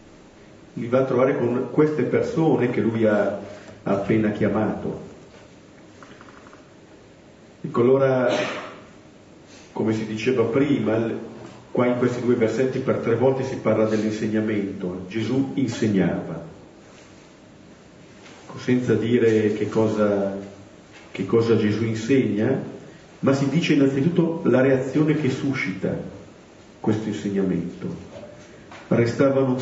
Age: 50-69